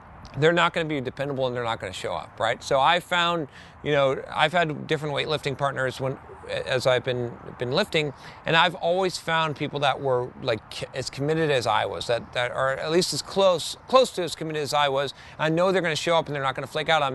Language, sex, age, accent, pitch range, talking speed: English, male, 40-59, American, 135-170 Hz, 250 wpm